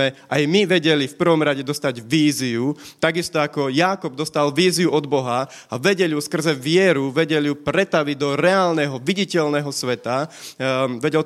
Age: 30-49